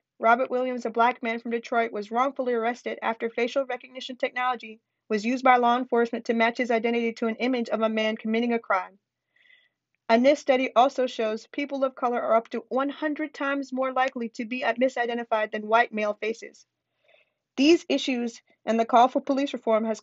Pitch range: 230-260 Hz